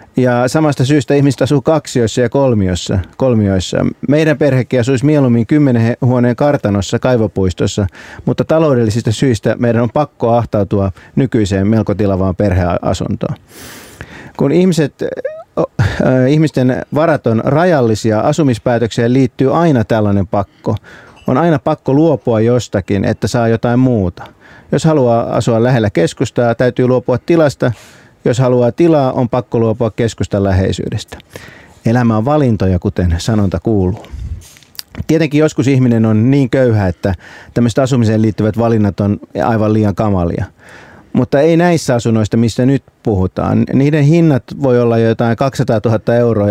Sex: male